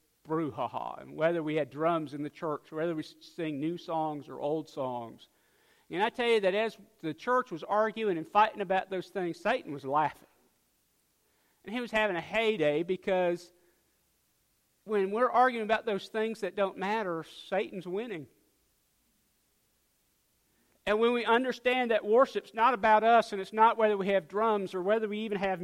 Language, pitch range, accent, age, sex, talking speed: English, 170-225 Hz, American, 50-69, male, 175 wpm